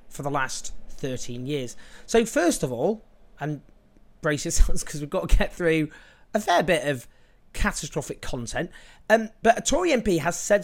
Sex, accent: male, British